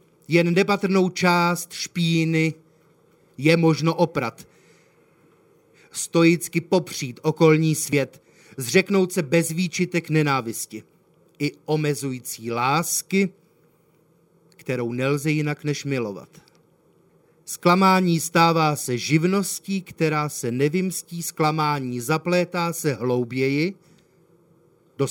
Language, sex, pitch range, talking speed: Czech, male, 145-175 Hz, 85 wpm